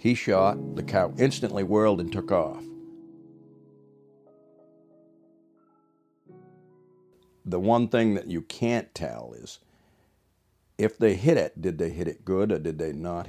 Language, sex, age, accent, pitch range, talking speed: English, male, 60-79, American, 85-105 Hz, 135 wpm